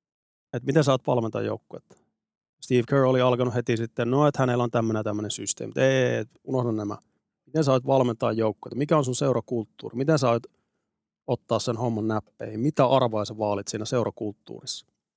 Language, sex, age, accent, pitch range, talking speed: Finnish, male, 30-49, native, 110-130 Hz, 160 wpm